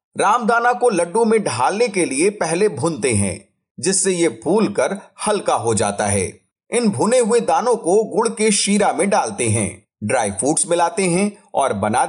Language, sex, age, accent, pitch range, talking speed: Hindi, male, 40-59, native, 140-215 Hz, 170 wpm